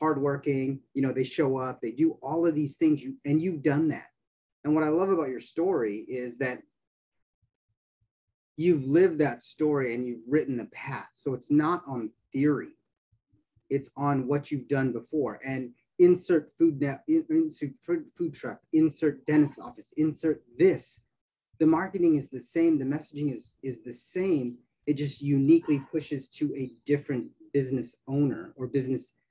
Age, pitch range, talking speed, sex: 30-49, 130-160 Hz, 165 wpm, male